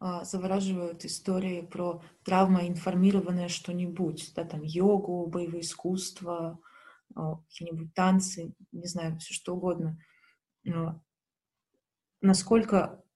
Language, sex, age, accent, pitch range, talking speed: Russian, female, 20-39, native, 170-190 Hz, 85 wpm